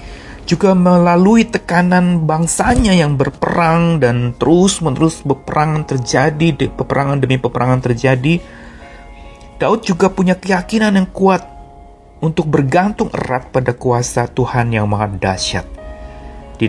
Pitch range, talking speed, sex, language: 100-155 Hz, 110 wpm, male, Indonesian